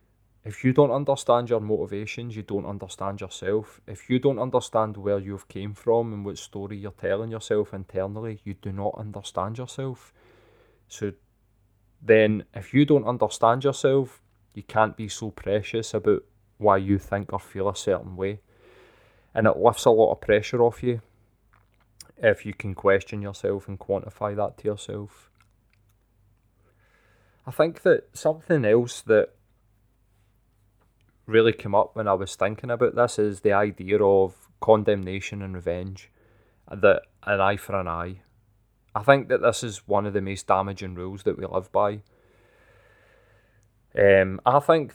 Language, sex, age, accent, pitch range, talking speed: English, male, 20-39, British, 100-115 Hz, 155 wpm